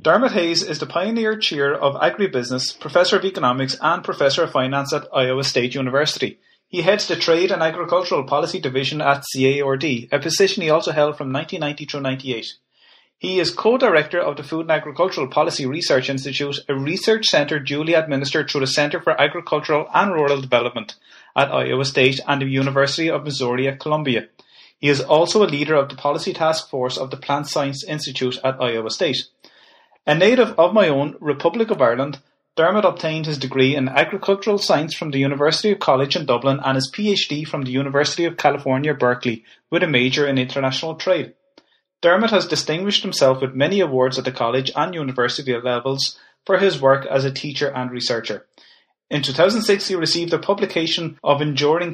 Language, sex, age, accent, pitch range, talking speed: English, male, 30-49, Irish, 135-170 Hz, 180 wpm